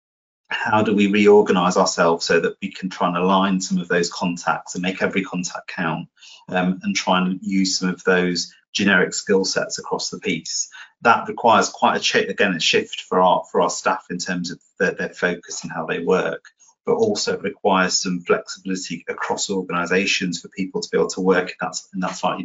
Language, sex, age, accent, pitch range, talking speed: English, male, 30-49, British, 90-100 Hz, 200 wpm